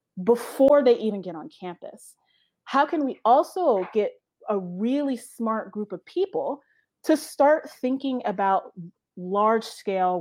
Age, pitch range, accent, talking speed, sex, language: 30-49, 185-255 Hz, American, 135 wpm, female, English